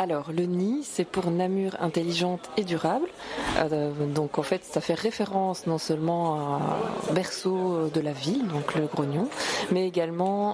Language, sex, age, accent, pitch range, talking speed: French, female, 20-39, French, 155-180 Hz, 165 wpm